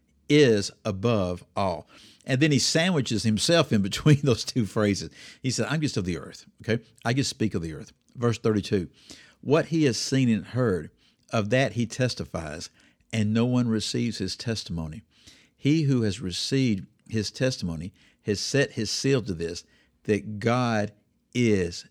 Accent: American